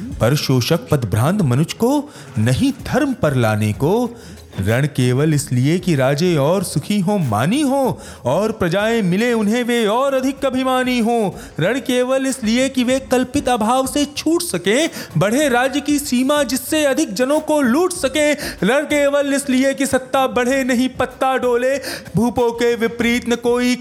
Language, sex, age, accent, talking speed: Hindi, male, 30-49, native, 160 wpm